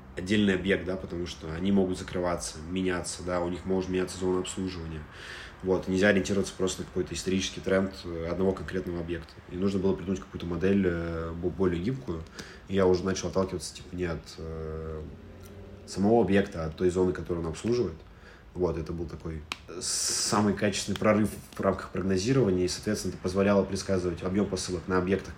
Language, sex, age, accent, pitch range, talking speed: Russian, male, 20-39, native, 85-95 Hz, 170 wpm